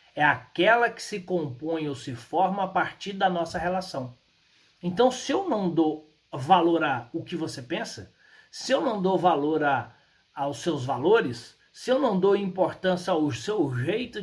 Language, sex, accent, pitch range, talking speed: Portuguese, male, Brazilian, 140-185 Hz, 175 wpm